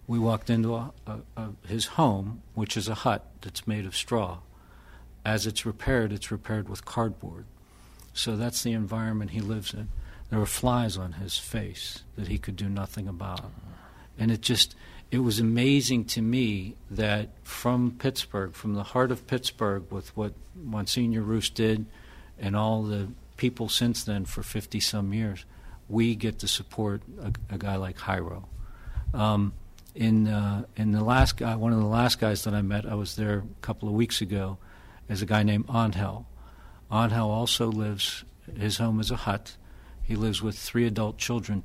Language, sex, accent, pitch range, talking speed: English, male, American, 100-115 Hz, 175 wpm